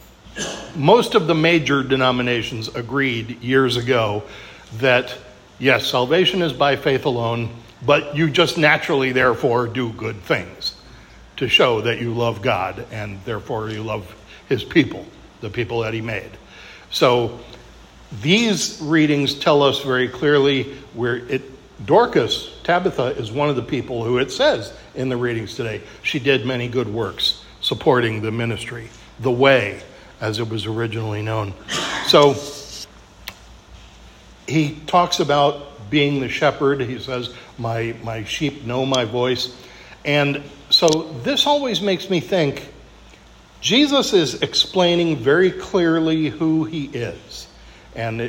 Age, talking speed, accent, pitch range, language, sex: 60-79, 135 wpm, American, 115-145 Hz, English, male